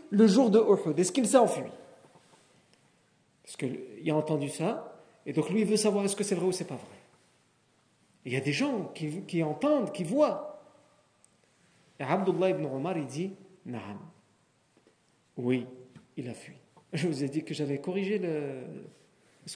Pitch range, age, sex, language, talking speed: 150-215 Hz, 50-69, male, French, 170 wpm